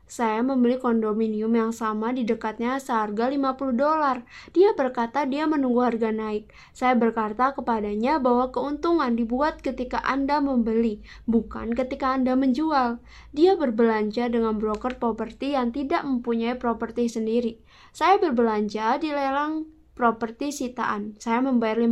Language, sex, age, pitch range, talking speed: Indonesian, female, 20-39, 230-280 Hz, 130 wpm